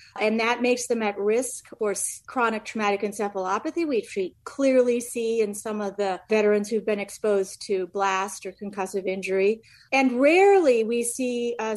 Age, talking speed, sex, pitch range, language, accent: 40-59, 165 wpm, female, 205-250 Hz, English, American